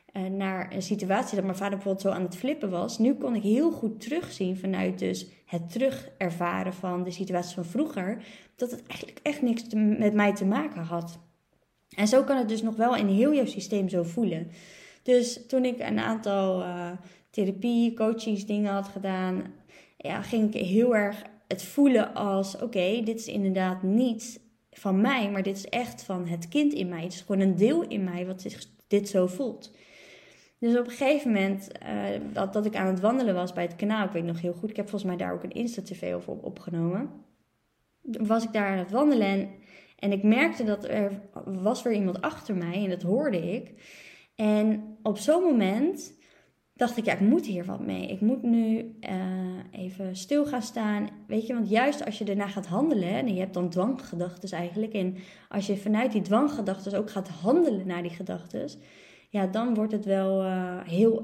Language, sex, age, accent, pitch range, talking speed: Dutch, female, 20-39, Dutch, 185-225 Hz, 195 wpm